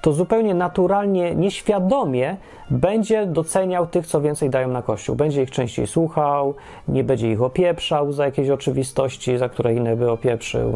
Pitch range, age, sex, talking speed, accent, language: 135-180 Hz, 30-49, male, 155 wpm, native, Polish